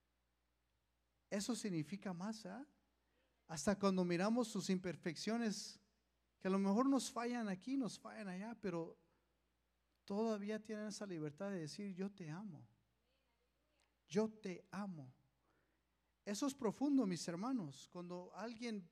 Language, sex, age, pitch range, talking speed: English, male, 40-59, 140-205 Hz, 125 wpm